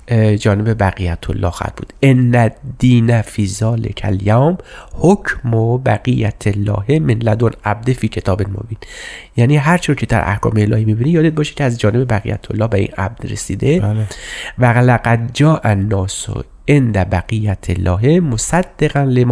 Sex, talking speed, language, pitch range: male, 135 wpm, Persian, 105-135 Hz